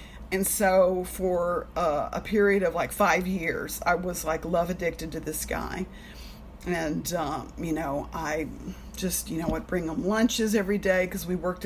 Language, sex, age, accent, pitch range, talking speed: English, female, 50-69, American, 175-200 Hz, 180 wpm